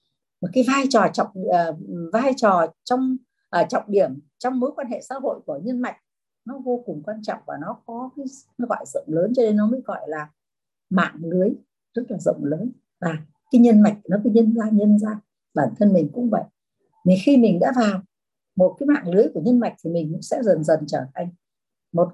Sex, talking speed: female, 215 wpm